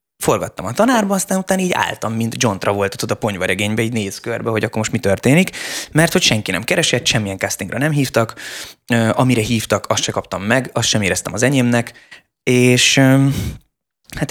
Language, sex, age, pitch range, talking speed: Hungarian, male, 20-39, 105-135 Hz, 180 wpm